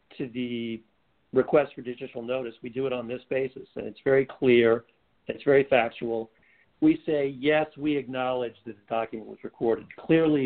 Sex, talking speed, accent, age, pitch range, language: male, 170 wpm, American, 50-69, 115-135 Hz, English